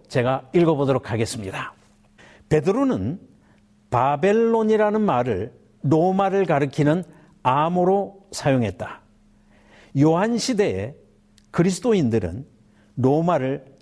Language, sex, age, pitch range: Korean, male, 60-79, 125-190 Hz